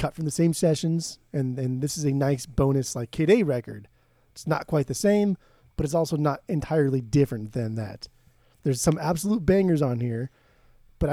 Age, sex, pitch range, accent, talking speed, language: 30-49, male, 125-160 Hz, American, 195 wpm, English